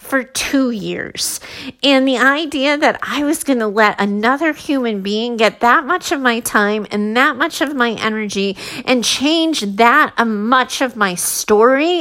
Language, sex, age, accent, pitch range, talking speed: English, female, 30-49, American, 225-290 Hz, 170 wpm